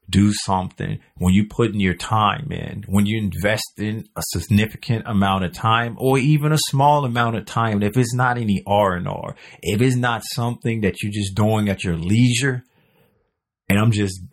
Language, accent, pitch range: English, American, 90-115 Hz